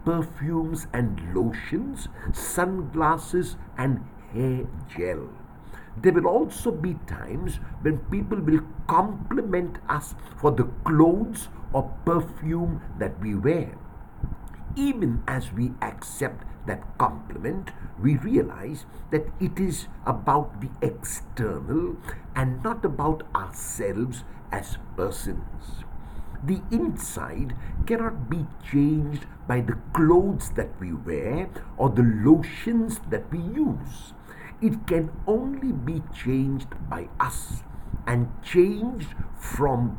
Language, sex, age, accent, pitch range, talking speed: English, male, 60-79, Indian, 120-170 Hz, 110 wpm